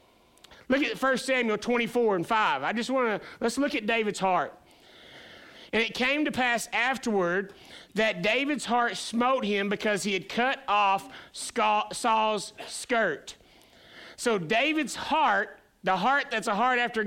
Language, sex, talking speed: English, male, 150 wpm